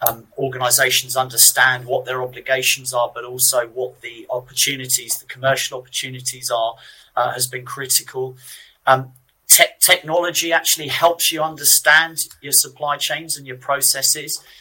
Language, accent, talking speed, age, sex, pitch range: English, British, 130 wpm, 40-59, male, 125-145 Hz